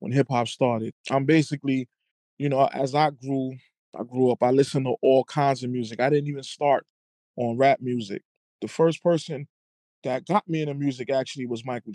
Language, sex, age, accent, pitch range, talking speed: English, male, 20-39, American, 130-155 Hz, 195 wpm